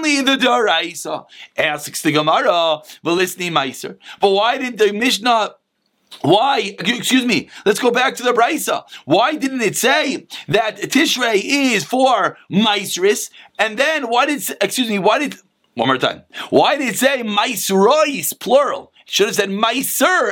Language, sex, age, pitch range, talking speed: English, male, 30-49, 200-265 Hz, 155 wpm